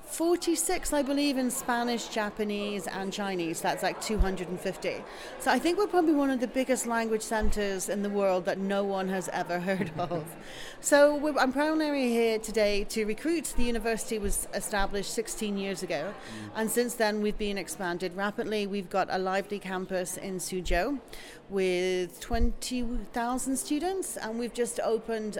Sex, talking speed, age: female, 160 wpm, 40-59